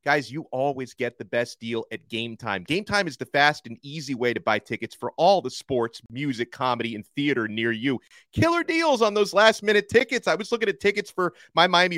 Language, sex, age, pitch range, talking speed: English, male, 30-49, 125-165 Hz, 225 wpm